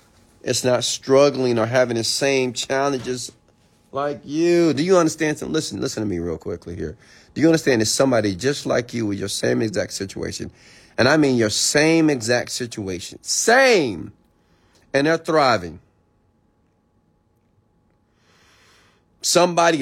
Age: 30-49